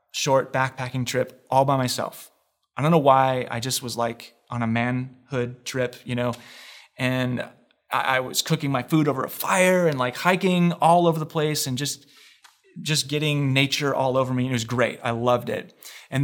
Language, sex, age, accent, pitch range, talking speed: English, male, 30-49, American, 120-140 Hz, 190 wpm